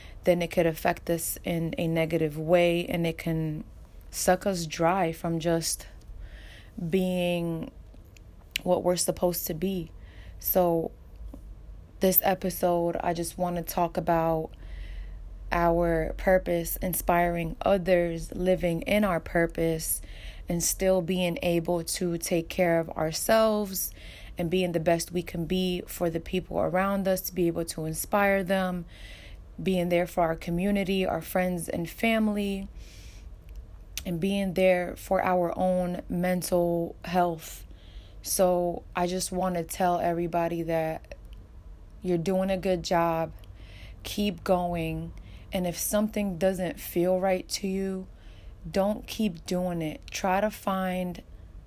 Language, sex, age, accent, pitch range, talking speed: English, female, 20-39, American, 160-185 Hz, 130 wpm